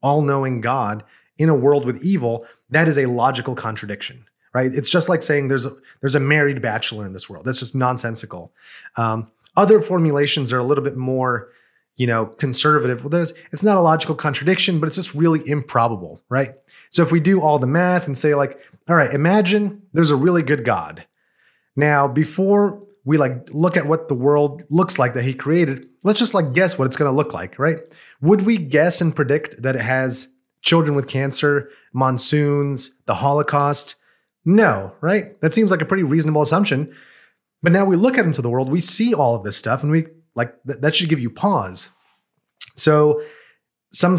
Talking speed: 195 wpm